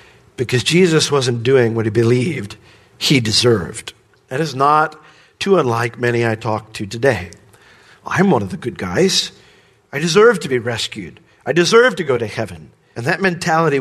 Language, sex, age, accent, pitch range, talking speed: English, male, 50-69, American, 125-175 Hz, 170 wpm